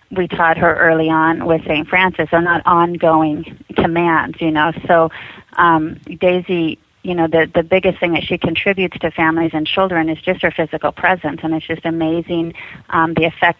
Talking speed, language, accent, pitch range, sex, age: 185 wpm, English, American, 160-175 Hz, female, 30-49